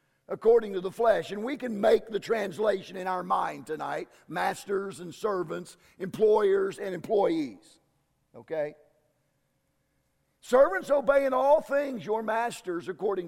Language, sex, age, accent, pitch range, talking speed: English, male, 50-69, American, 205-285 Hz, 130 wpm